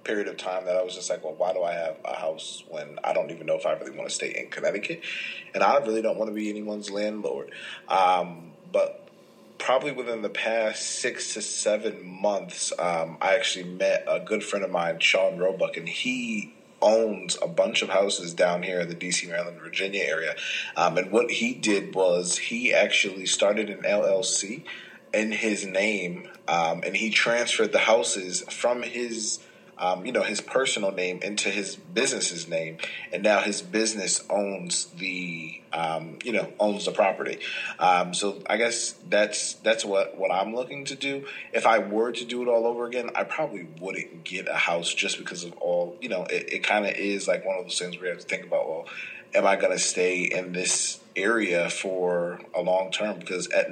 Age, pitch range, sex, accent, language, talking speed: 30-49, 90-115 Hz, male, American, English, 200 wpm